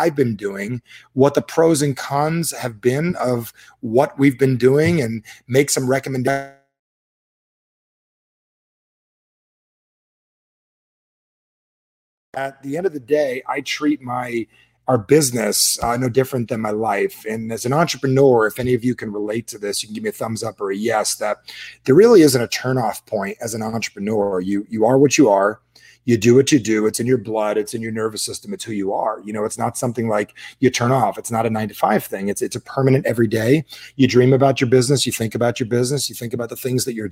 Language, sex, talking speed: English, male, 210 wpm